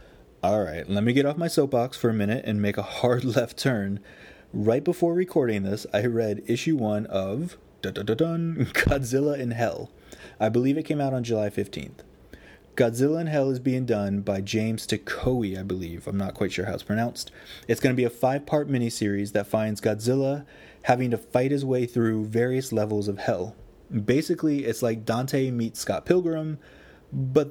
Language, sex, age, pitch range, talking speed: English, male, 20-39, 105-130 Hz, 180 wpm